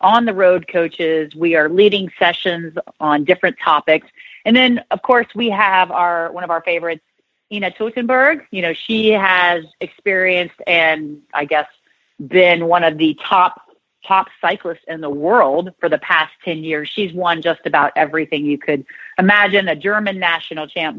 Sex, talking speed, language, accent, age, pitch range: female, 170 wpm, English, American, 40-59, 155-190 Hz